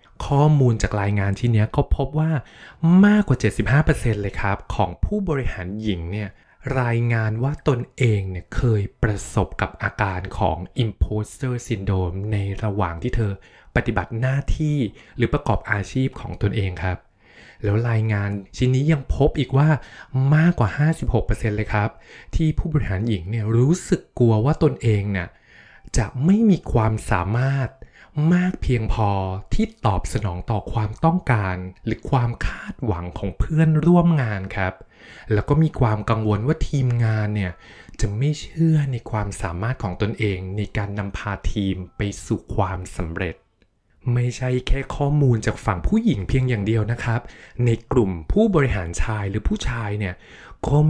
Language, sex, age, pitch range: Thai, male, 20-39, 100-130 Hz